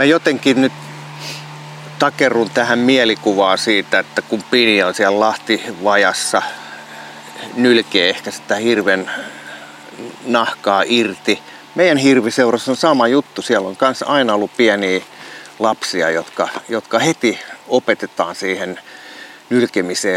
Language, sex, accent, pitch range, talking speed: Finnish, male, native, 95-120 Hz, 115 wpm